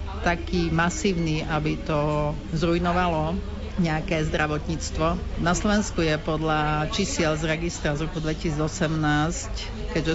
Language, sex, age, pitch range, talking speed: Slovak, female, 50-69, 155-175 Hz, 105 wpm